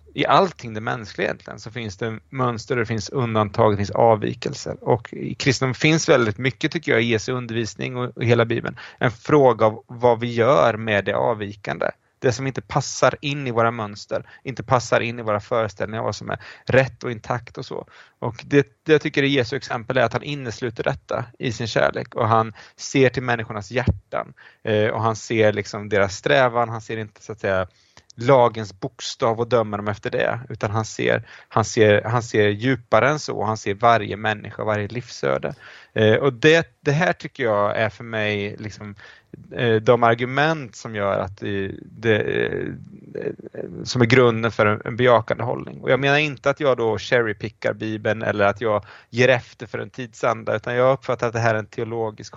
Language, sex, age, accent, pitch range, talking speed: English, male, 30-49, Swedish, 105-125 Hz, 195 wpm